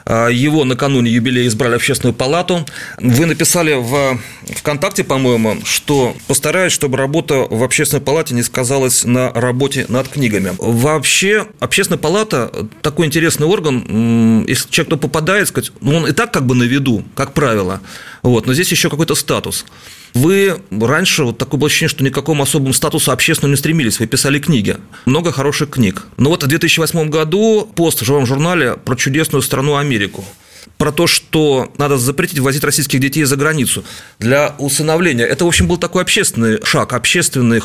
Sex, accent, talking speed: male, native, 165 wpm